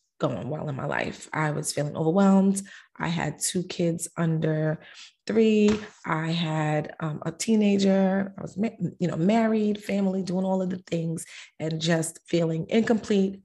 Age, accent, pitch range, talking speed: 30-49, American, 160-190 Hz, 160 wpm